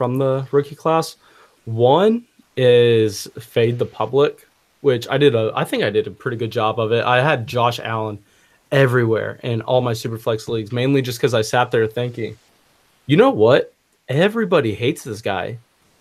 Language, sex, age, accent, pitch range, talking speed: English, male, 20-39, American, 110-130 Hz, 175 wpm